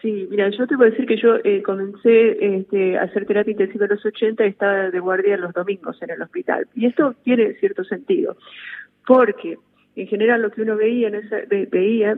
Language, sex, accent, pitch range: Spanish, female, Argentinian, 195-235 Hz